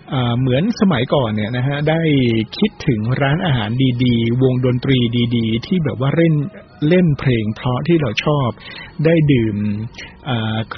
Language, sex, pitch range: Thai, male, 125-170 Hz